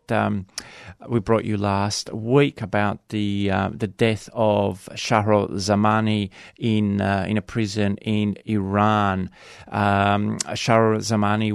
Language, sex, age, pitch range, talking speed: English, male, 30-49, 100-115 Hz, 125 wpm